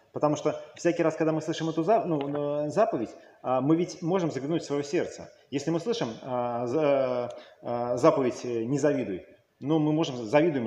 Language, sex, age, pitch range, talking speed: Russian, male, 30-49, 115-150 Hz, 140 wpm